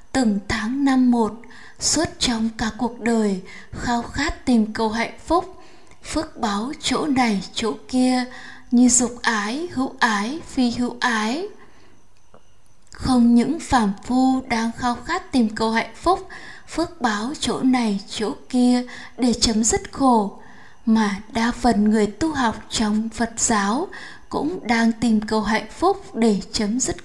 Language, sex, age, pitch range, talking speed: Vietnamese, female, 20-39, 220-255 Hz, 150 wpm